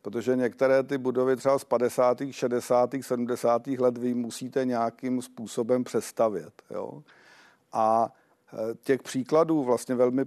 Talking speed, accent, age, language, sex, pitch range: 115 wpm, native, 50-69, Czech, male, 115-130 Hz